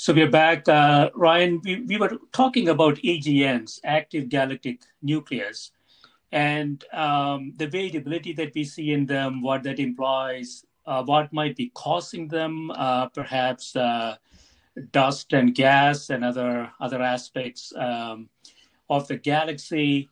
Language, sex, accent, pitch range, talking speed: English, male, Indian, 125-155 Hz, 135 wpm